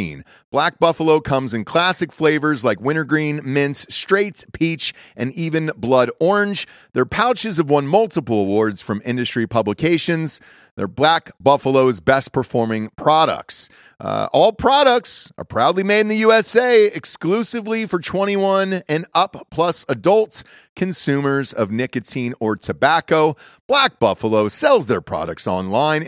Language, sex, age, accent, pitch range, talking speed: English, male, 40-59, American, 125-195 Hz, 130 wpm